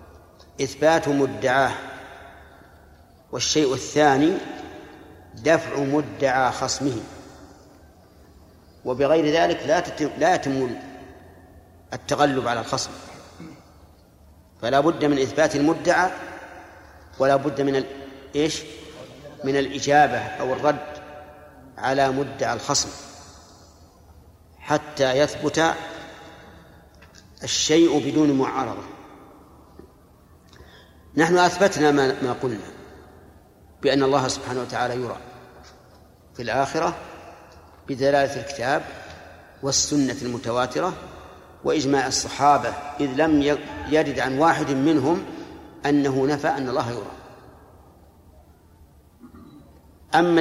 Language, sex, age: Arabic, male, 50-69